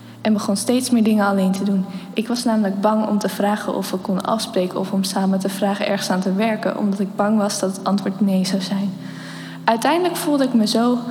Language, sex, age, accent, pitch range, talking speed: Dutch, female, 10-29, Dutch, 200-245 Hz, 230 wpm